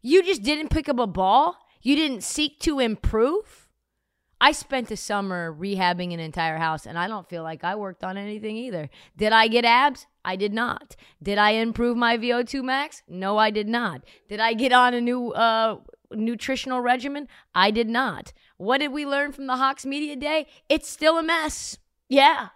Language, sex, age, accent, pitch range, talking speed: English, female, 30-49, American, 175-255 Hz, 195 wpm